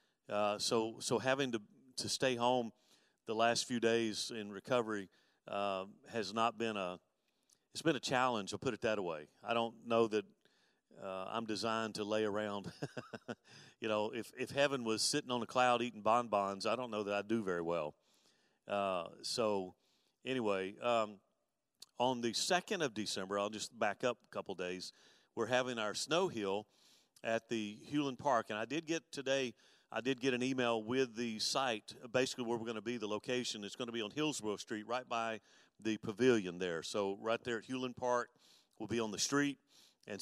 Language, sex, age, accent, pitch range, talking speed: English, male, 50-69, American, 105-125 Hz, 190 wpm